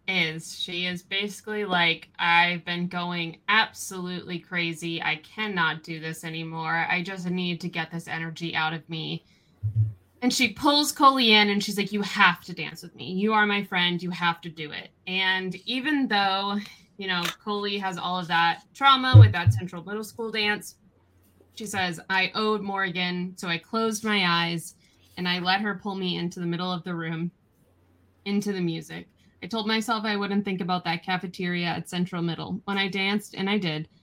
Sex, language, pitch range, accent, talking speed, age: female, English, 165-195 Hz, American, 190 wpm, 20-39